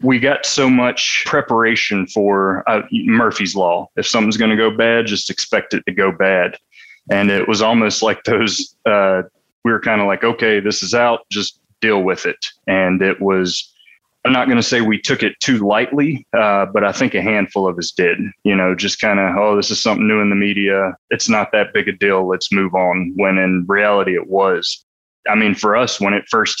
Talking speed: 220 wpm